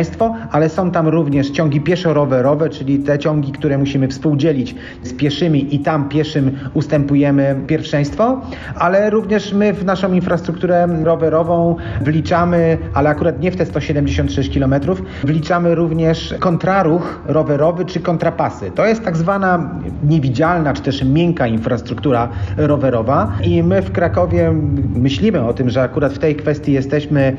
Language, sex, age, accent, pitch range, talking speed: Polish, male, 40-59, native, 140-165 Hz, 140 wpm